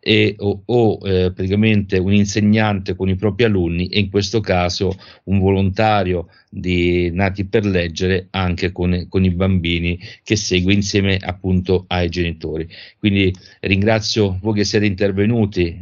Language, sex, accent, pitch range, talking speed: Italian, male, native, 90-100 Hz, 145 wpm